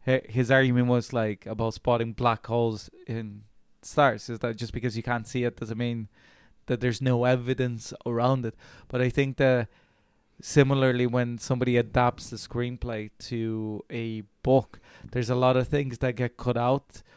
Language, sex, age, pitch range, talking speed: English, male, 20-39, 115-125 Hz, 170 wpm